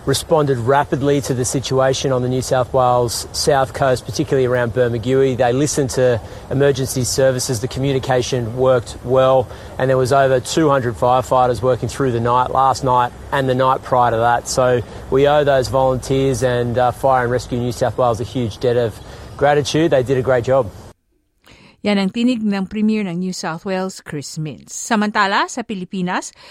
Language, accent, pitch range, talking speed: Filipino, Australian, 130-200 Hz, 180 wpm